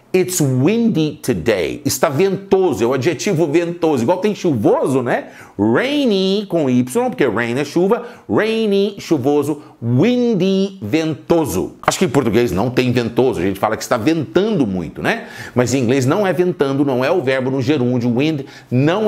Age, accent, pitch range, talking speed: 50-69, Brazilian, 135-200 Hz, 165 wpm